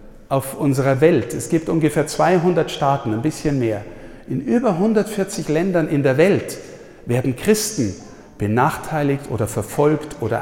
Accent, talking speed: German, 140 wpm